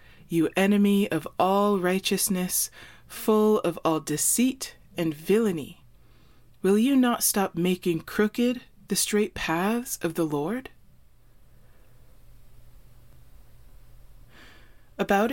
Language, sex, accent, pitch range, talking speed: English, female, American, 155-205 Hz, 95 wpm